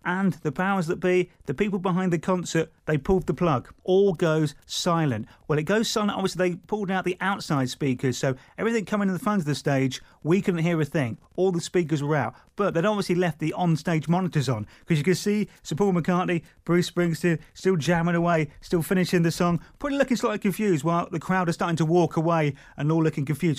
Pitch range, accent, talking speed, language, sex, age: 145-185 Hz, British, 220 wpm, English, male, 30-49